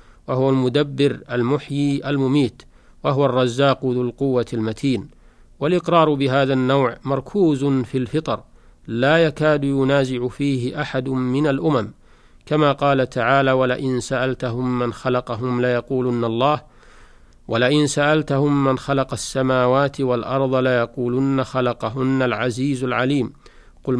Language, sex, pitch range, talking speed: Arabic, male, 125-140 Hz, 105 wpm